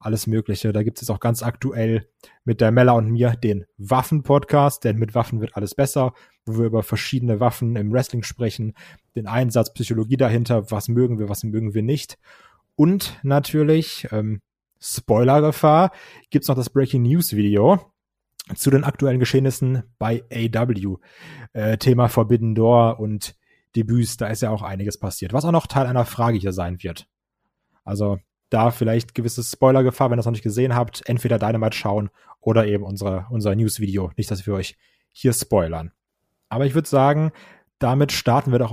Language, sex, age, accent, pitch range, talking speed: German, male, 30-49, German, 110-135 Hz, 170 wpm